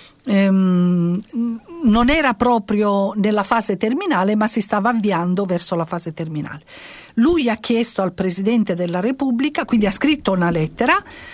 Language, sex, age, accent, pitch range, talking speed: Italian, female, 50-69, native, 175-230 Hz, 140 wpm